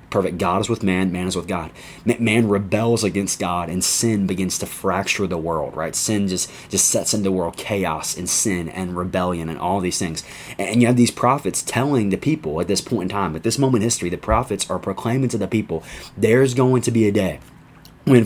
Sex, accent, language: male, American, English